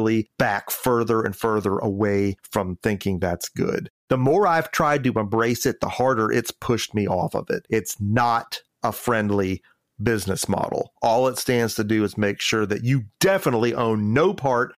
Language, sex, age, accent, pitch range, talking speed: English, male, 40-59, American, 105-130 Hz, 180 wpm